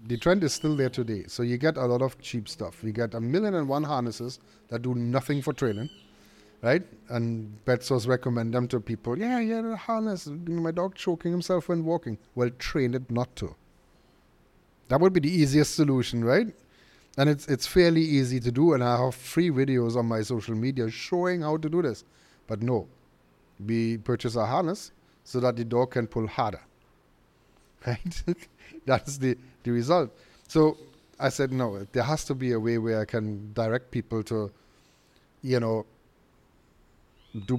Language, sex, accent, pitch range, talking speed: English, male, German, 110-135 Hz, 180 wpm